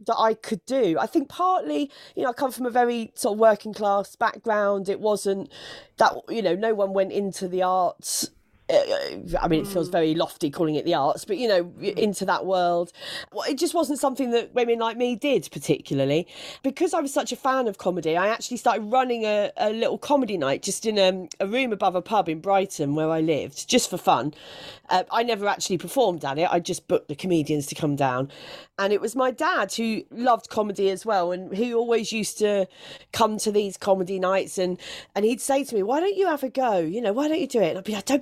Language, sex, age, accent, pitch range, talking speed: English, female, 40-59, British, 185-255 Hz, 230 wpm